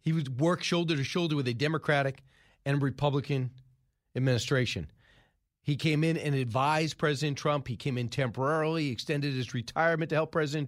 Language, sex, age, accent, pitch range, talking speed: English, male, 40-59, American, 130-170 Hz, 165 wpm